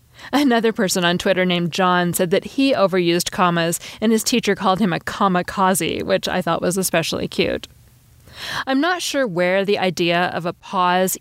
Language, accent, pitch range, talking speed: English, American, 180-235 Hz, 175 wpm